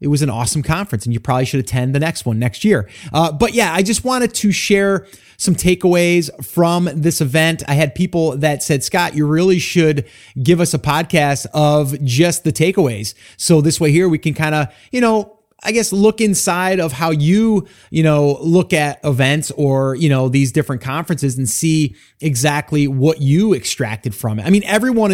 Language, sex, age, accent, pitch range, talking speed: English, male, 30-49, American, 130-165 Hz, 200 wpm